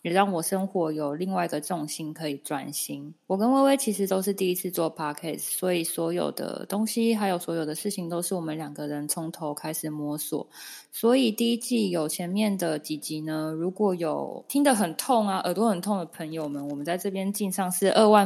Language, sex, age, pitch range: Chinese, female, 20-39, 155-195 Hz